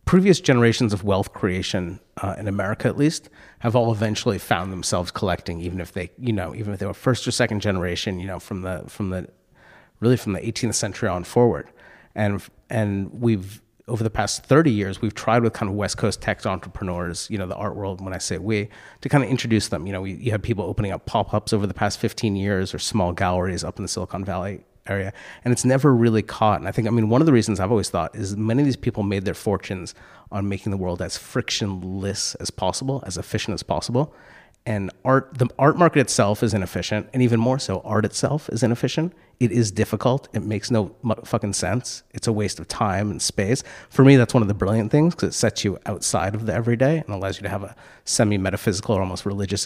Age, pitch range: 30-49, 100-120 Hz